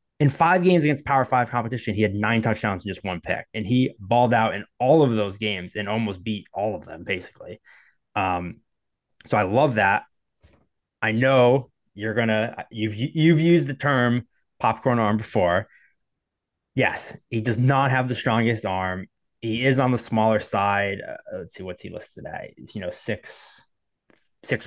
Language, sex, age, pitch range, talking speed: English, male, 20-39, 105-135 Hz, 180 wpm